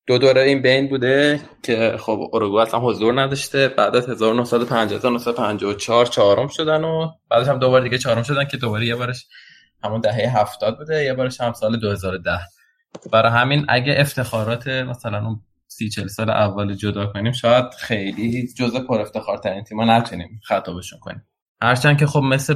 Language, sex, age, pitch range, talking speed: Persian, male, 20-39, 105-130 Hz, 170 wpm